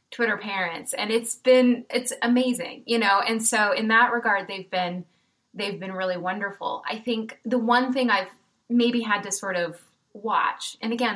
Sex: female